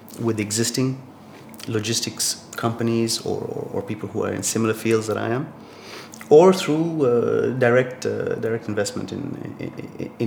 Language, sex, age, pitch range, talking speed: English, male, 30-49, 115-135 Hz, 145 wpm